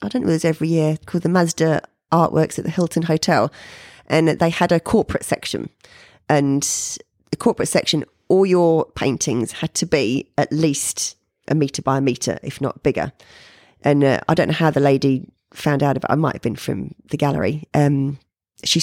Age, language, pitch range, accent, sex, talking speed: 30-49, English, 145-185 Hz, British, female, 200 wpm